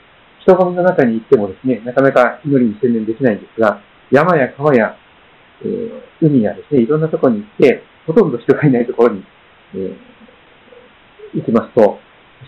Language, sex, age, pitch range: Japanese, male, 50-69, 125-180 Hz